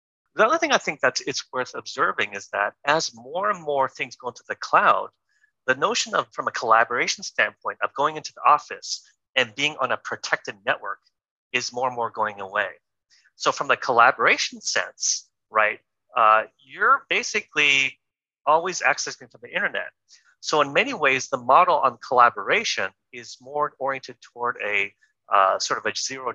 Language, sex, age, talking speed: English, male, 30-49, 175 wpm